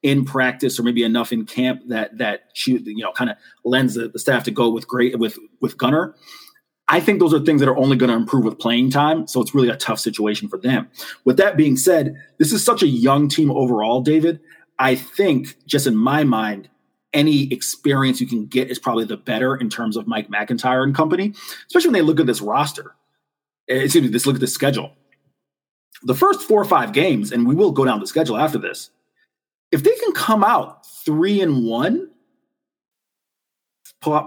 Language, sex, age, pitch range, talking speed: English, male, 30-49, 120-165 Hz, 205 wpm